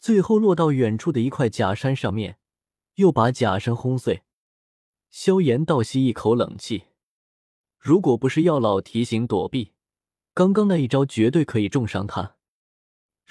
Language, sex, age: Chinese, male, 20-39